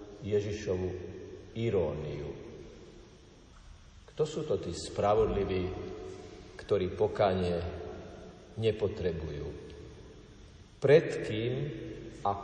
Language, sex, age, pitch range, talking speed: Slovak, male, 50-69, 100-140 Hz, 60 wpm